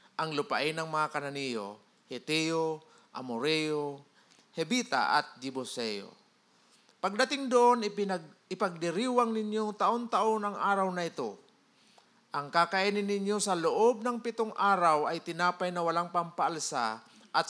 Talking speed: 115 wpm